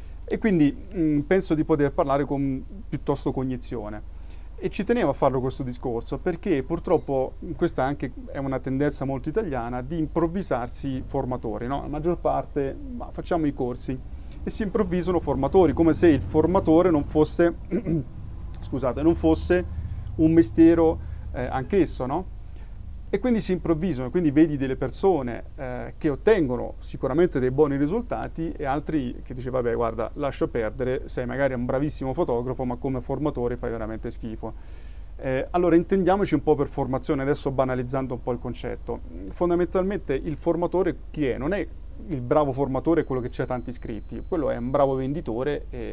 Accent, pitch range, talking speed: native, 125-160 Hz, 160 wpm